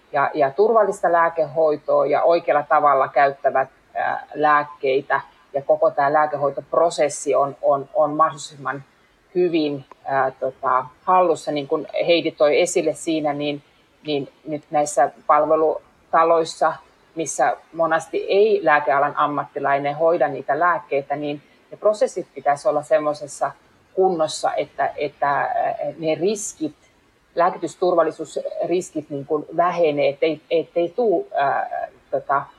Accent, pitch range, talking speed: native, 145-170 Hz, 110 wpm